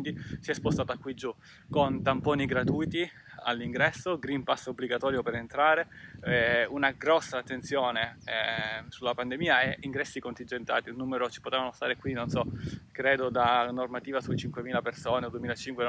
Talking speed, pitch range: 155 wpm, 125-150 Hz